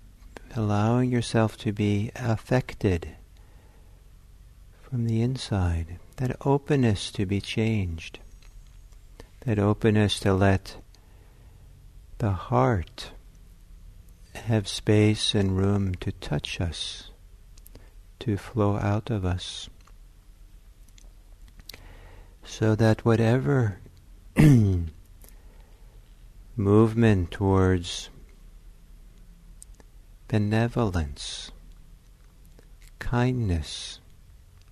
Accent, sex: American, male